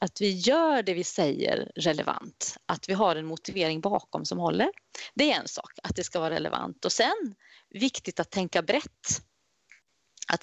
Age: 30-49